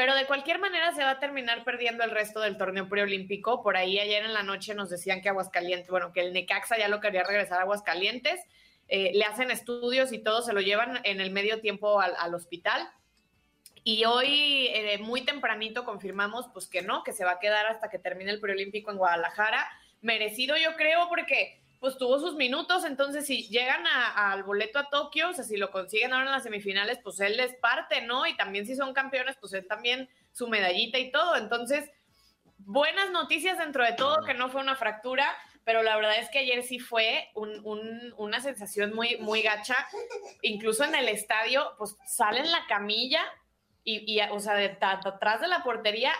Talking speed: 200 wpm